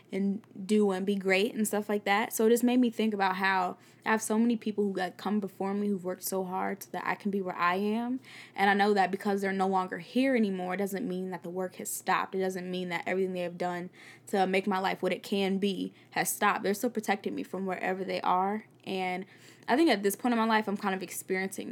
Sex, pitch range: female, 185-215 Hz